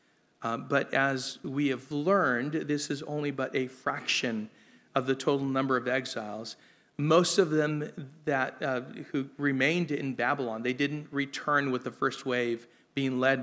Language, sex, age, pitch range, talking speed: English, male, 40-59, 120-145 Hz, 160 wpm